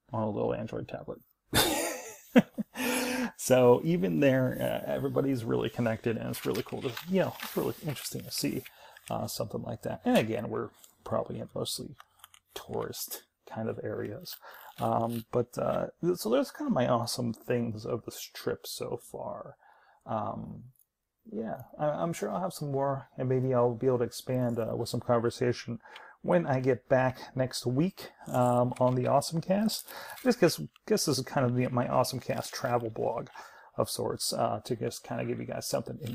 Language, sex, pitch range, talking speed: English, male, 120-160 Hz, 180 wpm